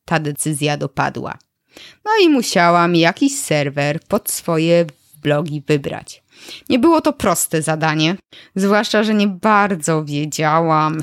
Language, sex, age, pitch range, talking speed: Polish, female, 20-39, 160-205 Hz, 120 wpm